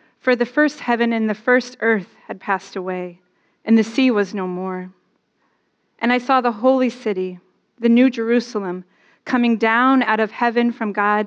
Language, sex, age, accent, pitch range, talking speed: English, female, 30-49, American, 195-240 Hz, 175 wpm